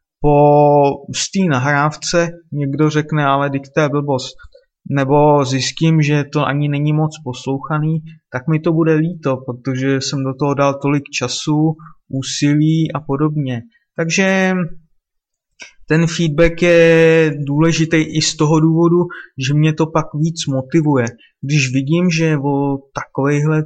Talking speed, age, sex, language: 130 wpm, 20-39, male, Czech